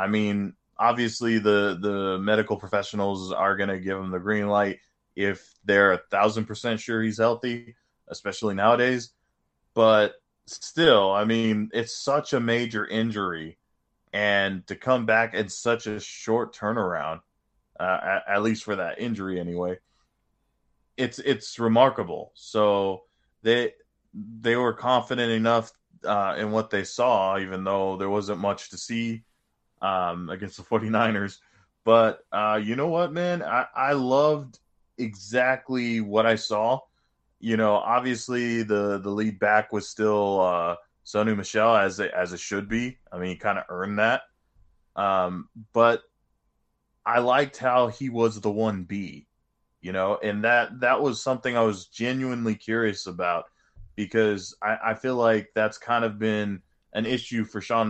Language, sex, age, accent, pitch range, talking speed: English, male, 20-39, American, 100-115 Hz, 150 wpm